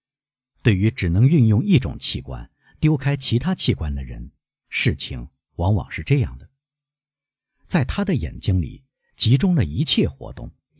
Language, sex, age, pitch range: Chinese, male, 50-69, 90-135 Hz